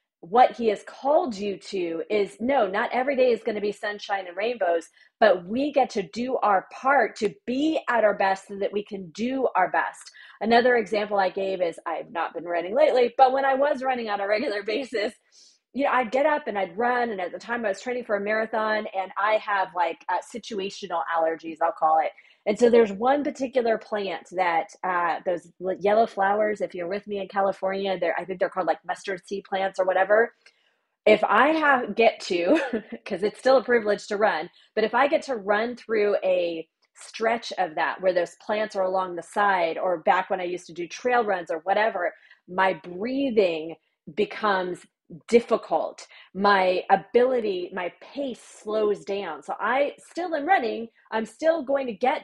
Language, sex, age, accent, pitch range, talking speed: English, female, 30-49, American, 190-245 Hz, 200 wpm